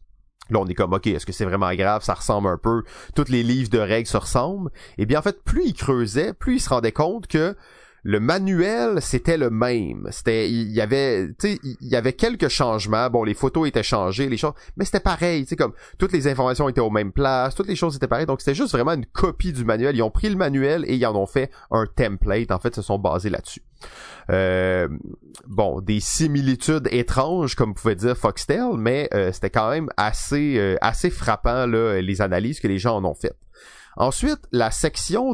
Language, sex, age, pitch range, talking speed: French, male, 30-49, 110-150 Hz, 220 wpm